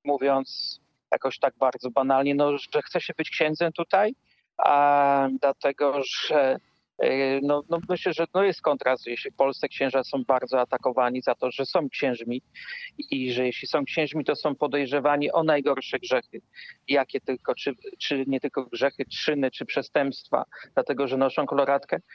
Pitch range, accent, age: 135-170 Hz, native, 40-59